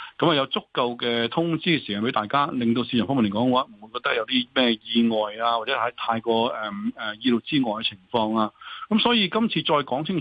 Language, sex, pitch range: Chinese, male, 120-150 Hz